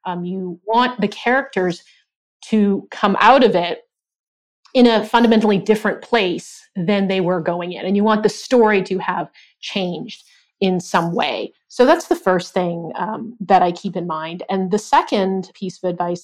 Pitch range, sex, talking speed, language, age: 180-215 Hz, female, 175 wpm, English, 30-49